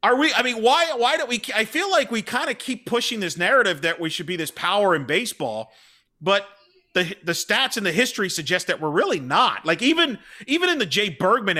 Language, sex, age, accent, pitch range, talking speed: English, male, 40-59, American, 155-210 Hz, 235 wpm